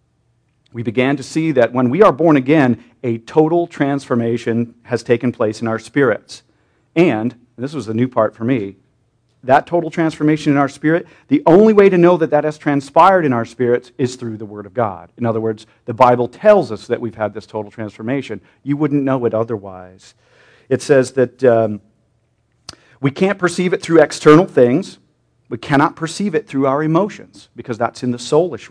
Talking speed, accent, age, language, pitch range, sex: 195 wpm, American, 40-59, English, 120-155 Hz, male